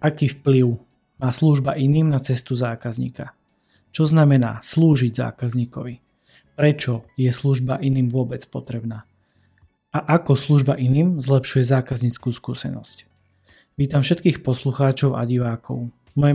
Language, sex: Slovak, male